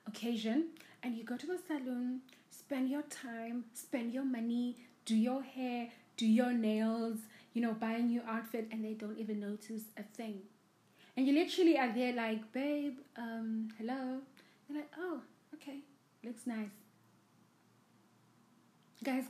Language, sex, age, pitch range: English, female, 20-39, 215-260 Hz